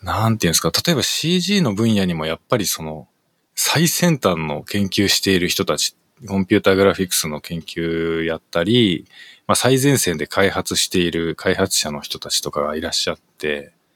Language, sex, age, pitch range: Japanese, male, 20-39, 90-135 Hz